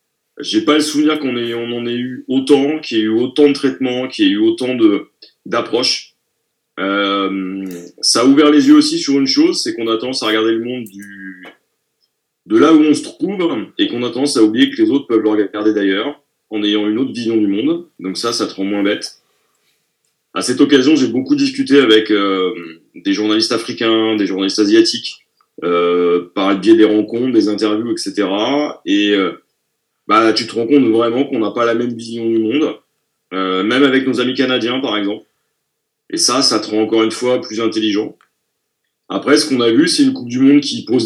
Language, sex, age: French, male, 30-49